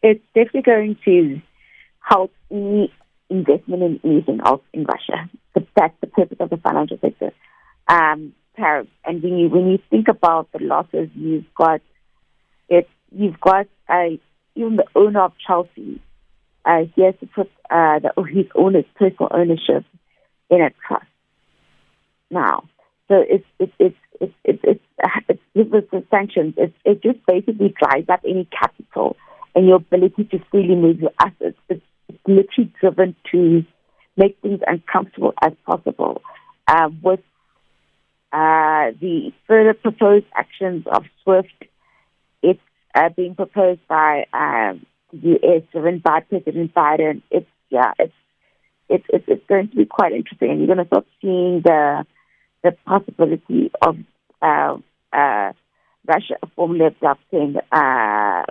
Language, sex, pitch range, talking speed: English, female, 165-205 Hz, 145 wpm